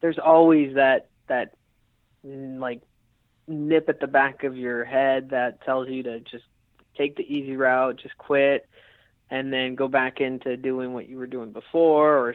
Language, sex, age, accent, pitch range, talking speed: English, male, 20-39, American, 125-145 Hz, 170 wpm